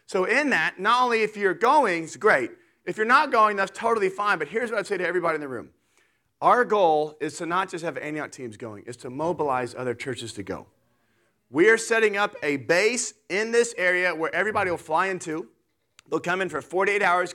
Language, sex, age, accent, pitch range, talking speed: English, male, 30-49, American, 180-235 Hz, 220 wpm